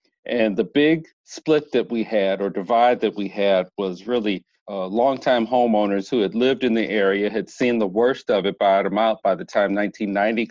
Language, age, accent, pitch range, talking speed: English, 40-59, American, 100-120 Hz, 200 wpm